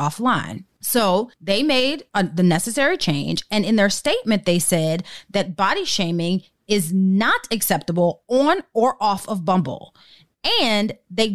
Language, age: English, 30-49